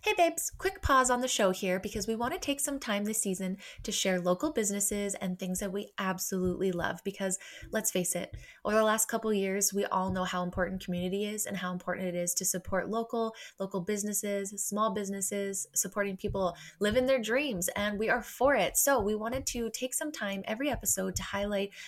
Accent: American